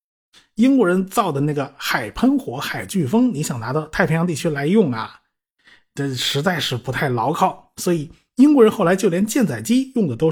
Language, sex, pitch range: Chinese, male, 145-220 Hz